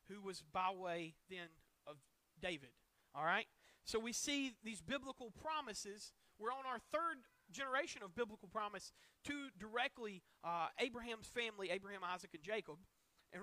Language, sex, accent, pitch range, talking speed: English, male, American, 195-265 Hz, 150 wpm